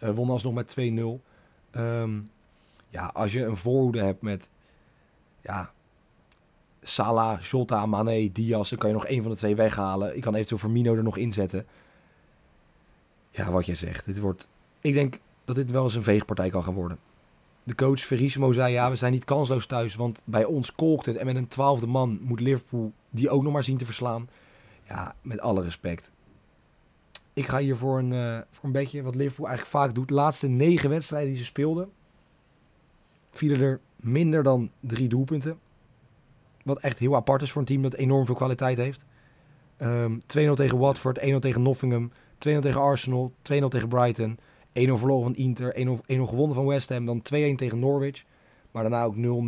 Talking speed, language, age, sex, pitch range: 185 wpm, Dutch, 30-49, male, 115-135 Hz